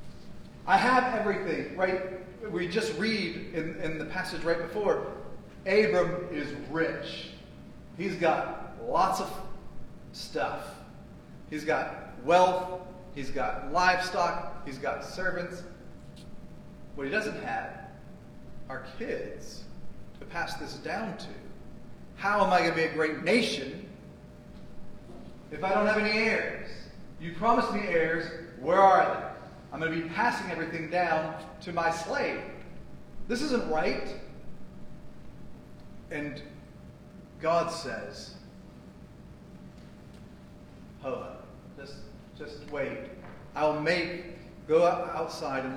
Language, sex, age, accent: English, male, 30-49, American